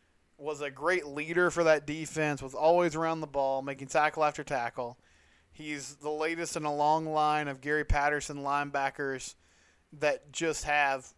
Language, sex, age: English, male, 20-39